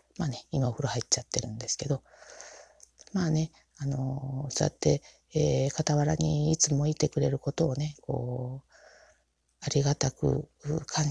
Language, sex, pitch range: Japanese, female, 115-155 Hz